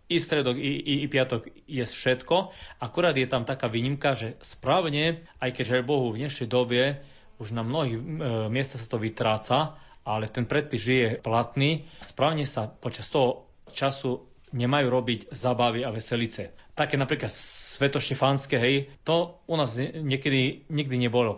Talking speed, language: 155 wpm, Slovak